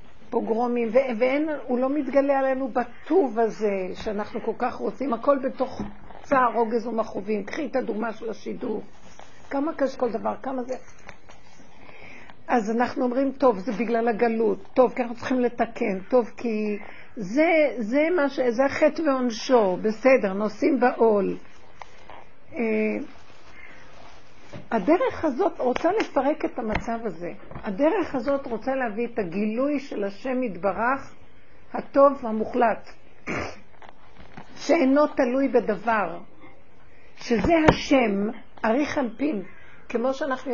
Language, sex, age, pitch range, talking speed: Hebrew, female, 60-79, 225-275 Hz, 115 wpm